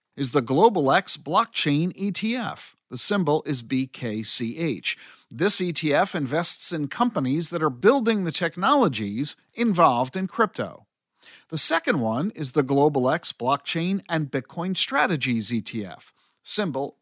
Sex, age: male, 50-69